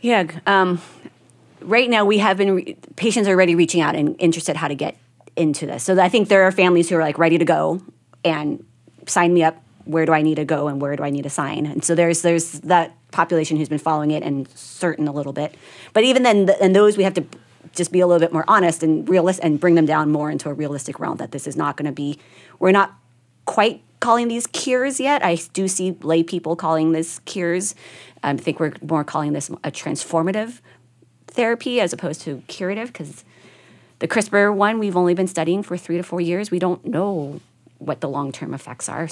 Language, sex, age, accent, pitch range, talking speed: English, female, 30-49, American, 150-190 Hz, 230 wpm